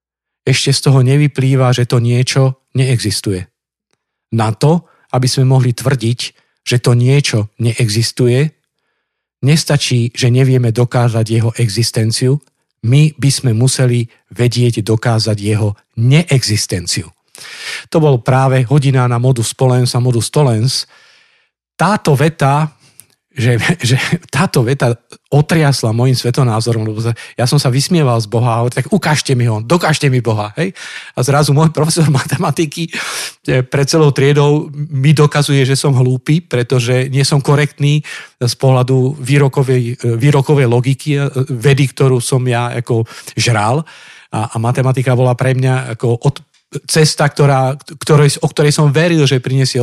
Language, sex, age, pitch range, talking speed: Slovak, male, 50-69, 120-145 Hz, 135 wpm